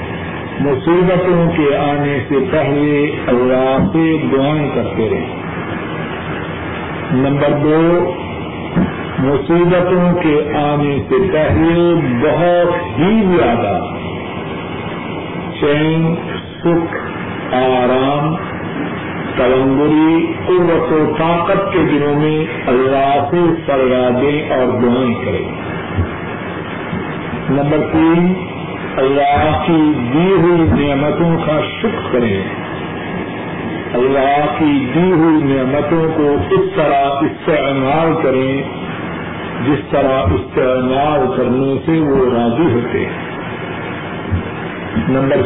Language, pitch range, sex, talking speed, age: Urdu, 135-165 Hz, male, 90 wpm, 50-69